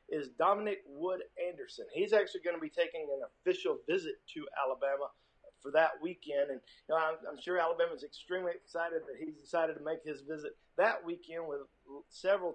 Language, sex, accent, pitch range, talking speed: English, male, American, 155-195 Hz, 180 wpm